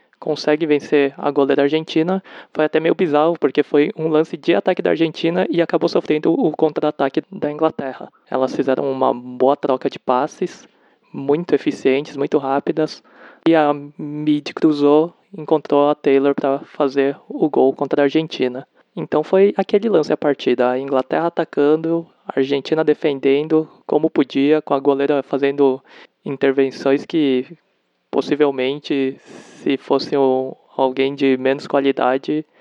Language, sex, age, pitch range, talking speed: Portuguese, male, 20-39, 135-155 Hz, 140 wpm